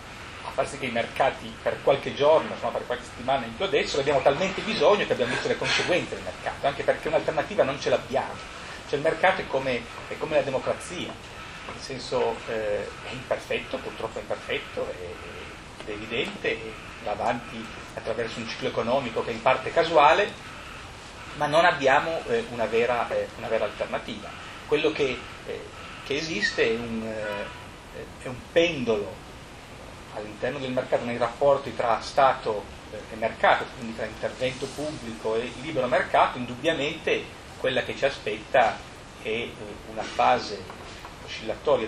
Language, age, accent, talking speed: Italian, 30-49, native, 155 wpm